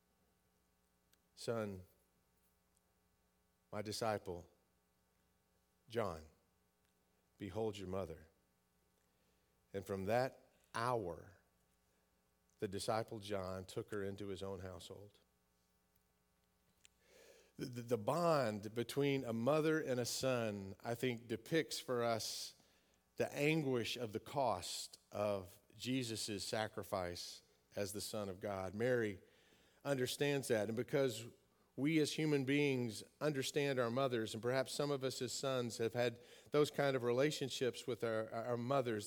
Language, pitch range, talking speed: English, 95-135 Hz, 115 wpm